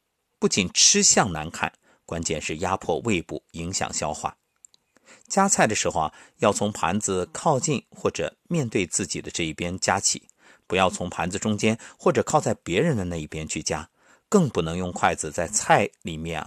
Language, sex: Chinese, male